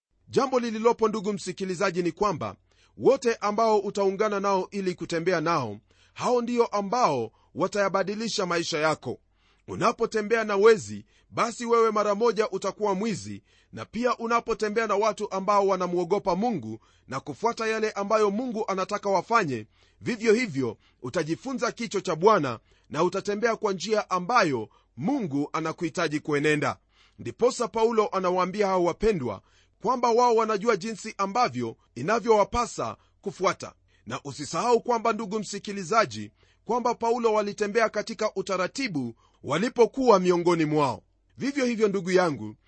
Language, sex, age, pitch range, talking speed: Swahili, male, 40-59, 160-225 Hz, 120 wpm